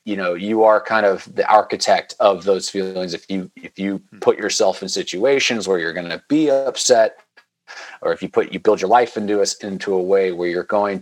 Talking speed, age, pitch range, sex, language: 225 wpm, 40-59, 95-110 Hz, male, English